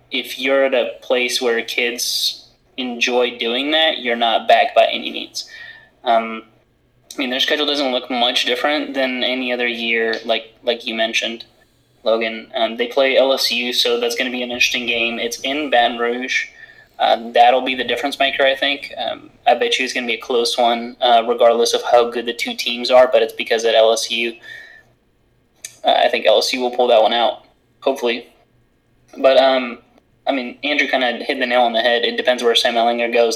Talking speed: 200 wpm